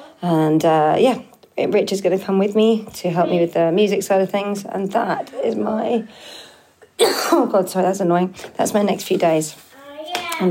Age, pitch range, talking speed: 40-59, 170-215 Hz, 195 wpm